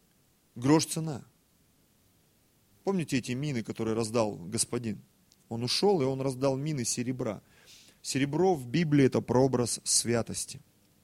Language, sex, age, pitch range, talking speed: Russian, male, 30-49, 130-190 Hz, 115 wpm